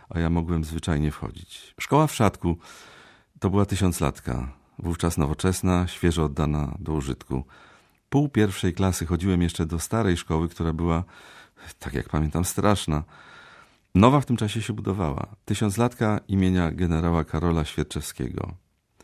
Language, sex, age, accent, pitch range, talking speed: Polish, male, 40-59, native, 80-100 Hz, 130 wpm